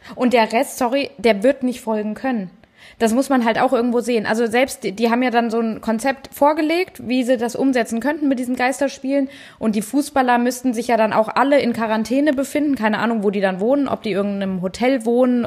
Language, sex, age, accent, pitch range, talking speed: German, female, 20-39, German, 230-280 Hz, 225 wpm